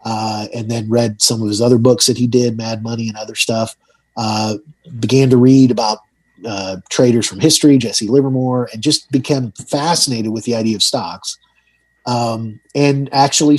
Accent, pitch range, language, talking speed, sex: American, 110-135 Hz, English, 175 wpm, male